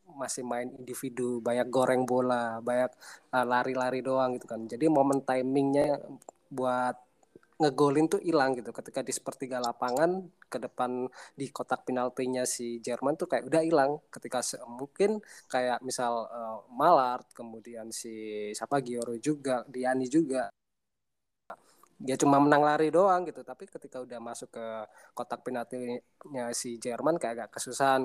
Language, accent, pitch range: Indonesian, native, 120-140 Hz